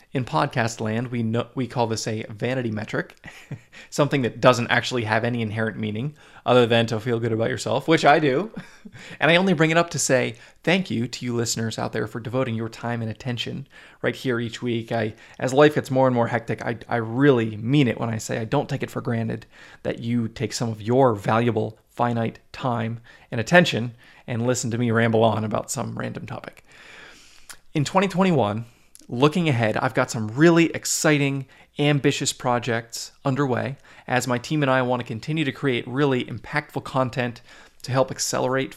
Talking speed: 195 wpm